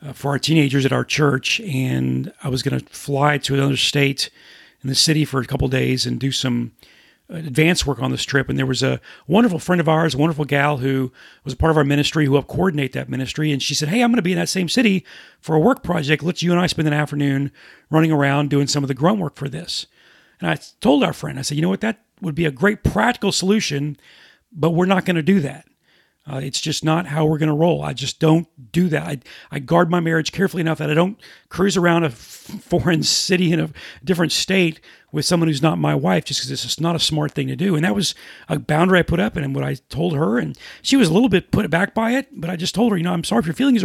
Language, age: English, 40-59